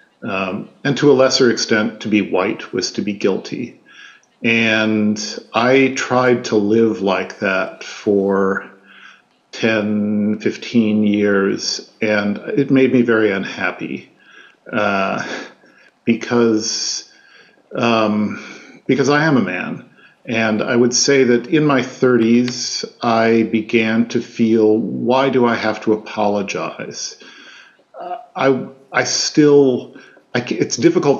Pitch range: 105-120 Hz